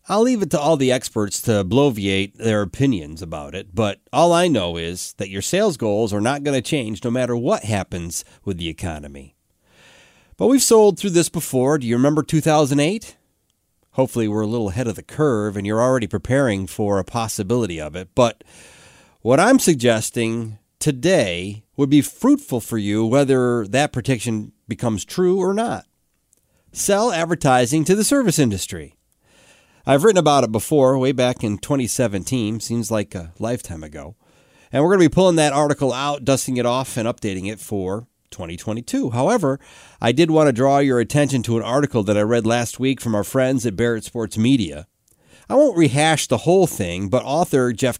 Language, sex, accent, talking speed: English, male, American, 185 wpm